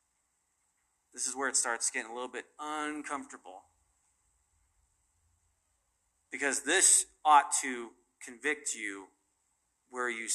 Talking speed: 105 wpm